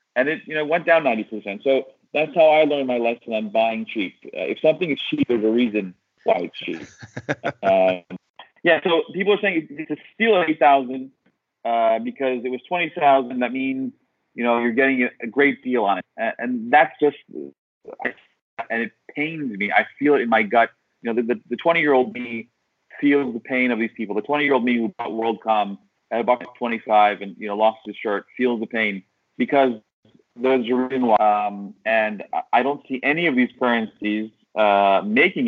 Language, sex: English, male